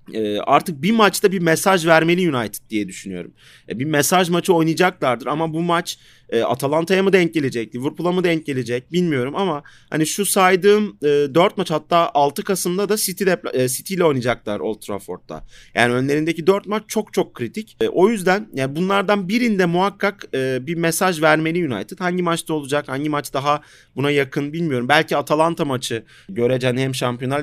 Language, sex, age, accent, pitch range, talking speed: Turkish, male, 30-49, native, 130-185 Hz, 155 wpm